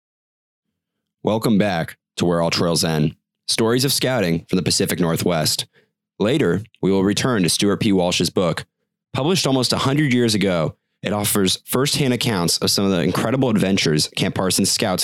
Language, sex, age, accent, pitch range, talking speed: English, male, 30-49, American, 85-125 Hz, 165 wpm